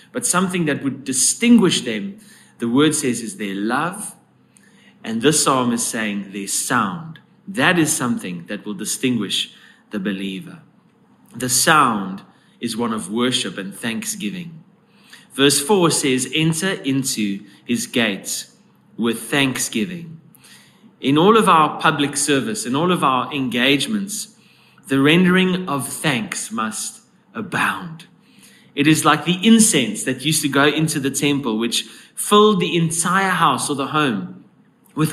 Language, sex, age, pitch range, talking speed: English, male, 30-49, 130-200 Hz, 140 wpm